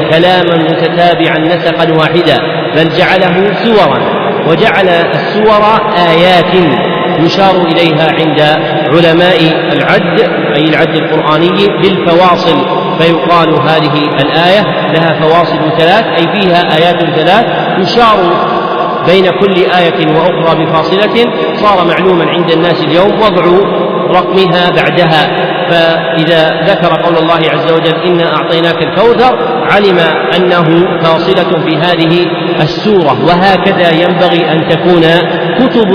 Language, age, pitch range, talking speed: Arabic, 40-59, 165-180 Hz, 105 wpm